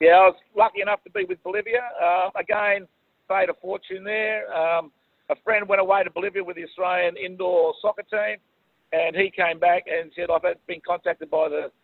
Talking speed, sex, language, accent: 200 wpm, male, English, Australian